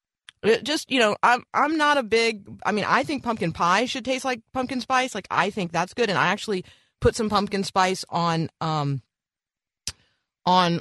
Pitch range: 155-240 Hz